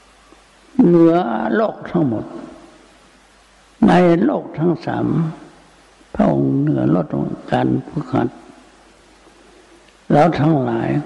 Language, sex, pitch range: Thai, male, 145-175 Hz